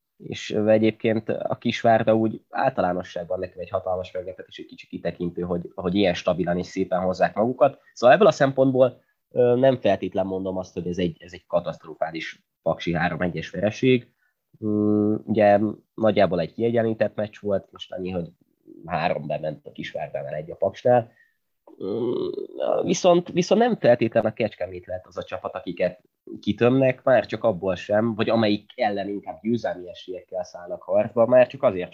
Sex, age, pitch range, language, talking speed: male, 20-39, 95-120 Hz, Hungarian, 150 wpm